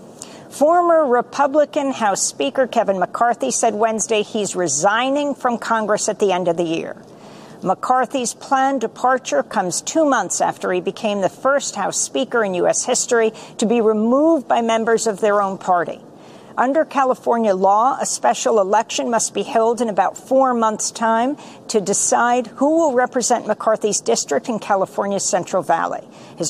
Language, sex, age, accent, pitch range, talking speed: English, female, 50-69, American, 200-260 Hz, 155 wpm